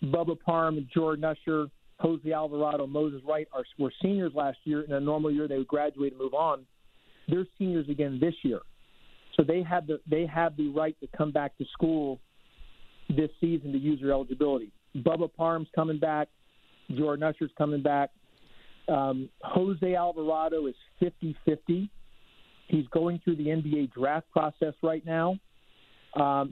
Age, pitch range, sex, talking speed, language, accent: 50-69, 145-170 Hz, male, 160 wpm, English, American